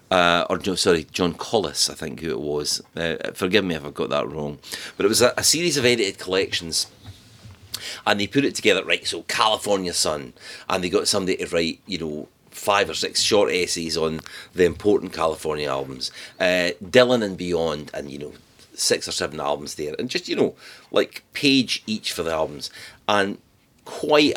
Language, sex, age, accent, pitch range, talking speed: English, male, 40-59, British, 80-100 Hz, 190 wpm